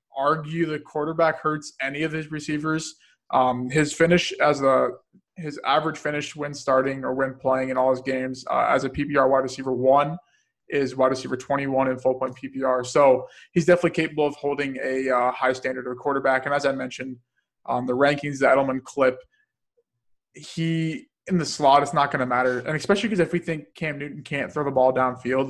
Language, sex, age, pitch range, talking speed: English, male, 20-39, 130-150 Hz, 200 wpm